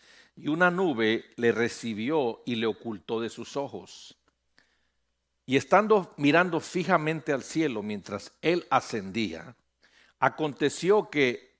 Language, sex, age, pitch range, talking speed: English, male, 60-79, 115-165 Hz, 115 wpm